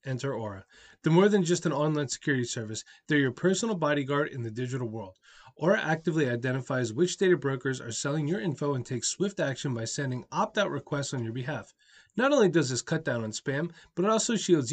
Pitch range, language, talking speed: 125-170 Hz, English, 210 wpm